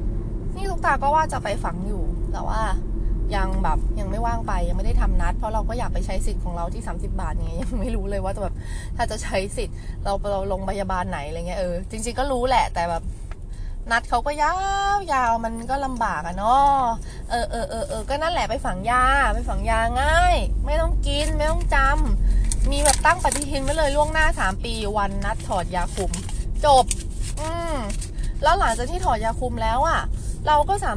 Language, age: Thai, 20-39